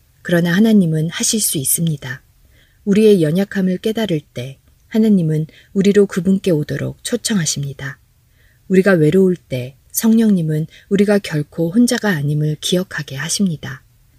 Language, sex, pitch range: Korean, female, 140-195 Hz